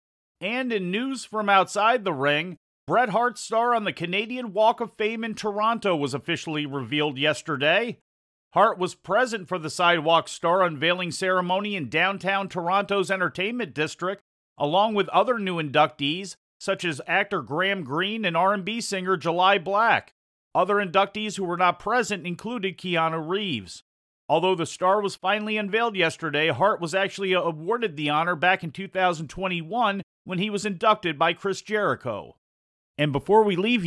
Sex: male